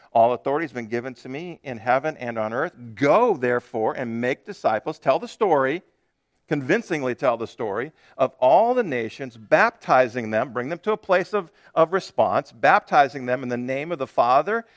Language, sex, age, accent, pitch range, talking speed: English, male, 50-69, American, 115-160 Hz, 185 wpm